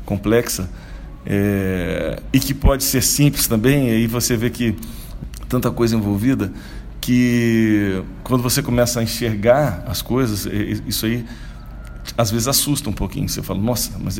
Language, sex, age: Portuguese, male, 50-69